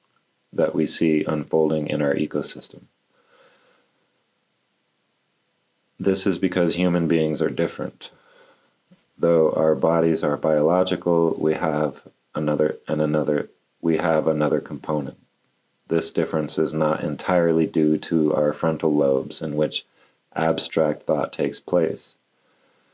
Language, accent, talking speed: English, American, 115 wpm